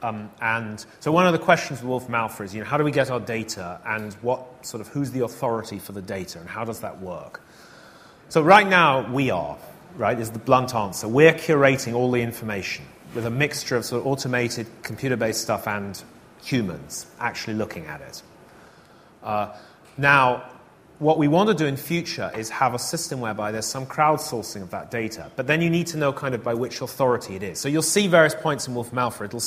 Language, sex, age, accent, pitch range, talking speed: English, male, 30-49, British, 115-150 Hz, 215 wpm